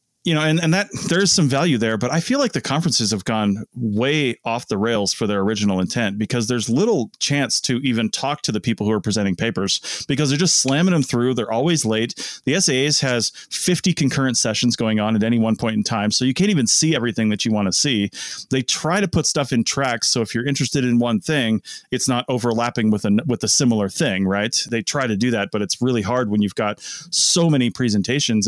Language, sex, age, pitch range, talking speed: English, male, 30-49, 110-140 Hz, 235 wpm